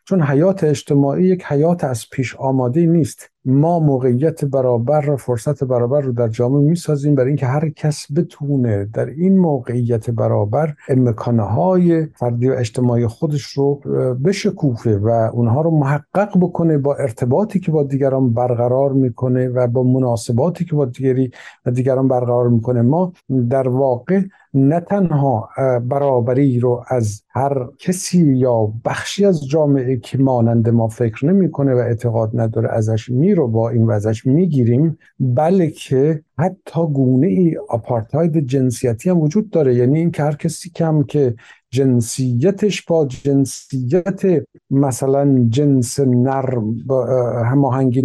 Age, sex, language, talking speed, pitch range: 50-69, male, Persian, 140 wpm, 125-155 Hz